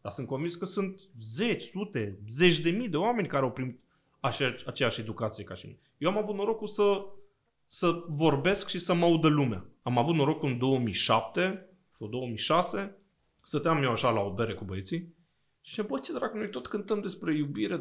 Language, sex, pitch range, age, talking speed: Romanian, male, 130-205 Hz, 30-49, 200 wpm